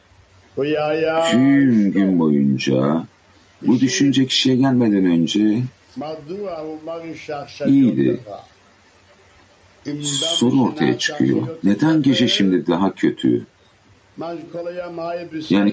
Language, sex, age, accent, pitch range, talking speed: Turkish, male, 60-79, native, 95-135 Hz, 70 wpm